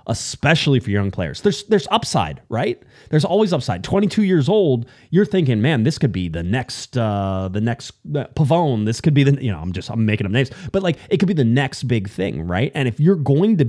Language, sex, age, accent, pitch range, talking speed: English, male, 30-49, American, 110-150 Hz, 235 wpm